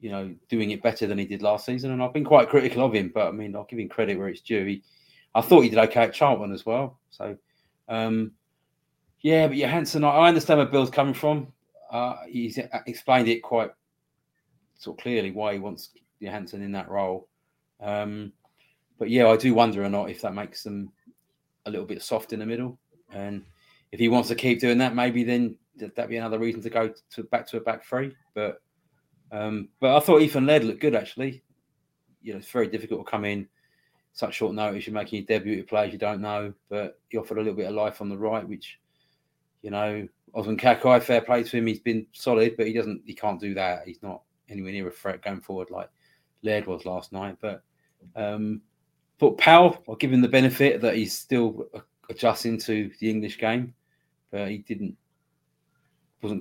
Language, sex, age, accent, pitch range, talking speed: English, male, 30-49, British, 105-125 Hz, 210 wpm